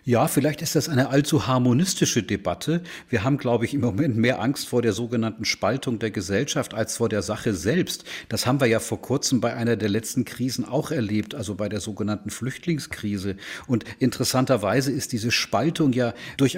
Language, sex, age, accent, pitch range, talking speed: German, male, 40-59, German, 110-135 Hz, 190 wpm